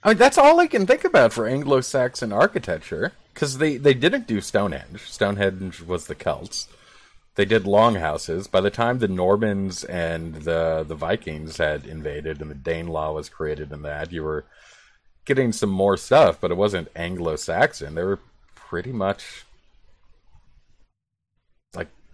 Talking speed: 165 wpm